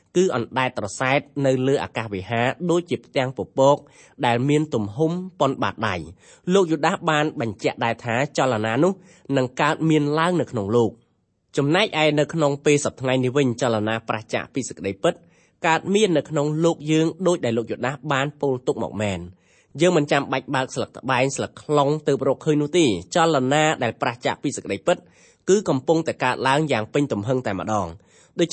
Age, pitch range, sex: 20-39, 120-160 Hz, male